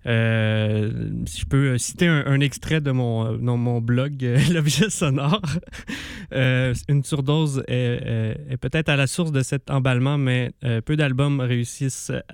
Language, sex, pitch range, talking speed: French, male, 115-140 Hz, 160 wpm